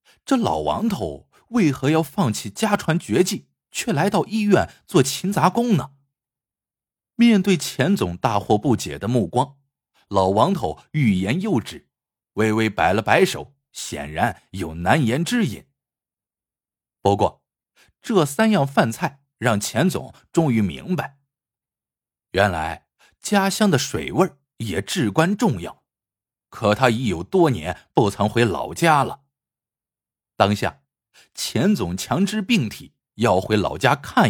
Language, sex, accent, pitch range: Chinese, male, native, 115-185 Hz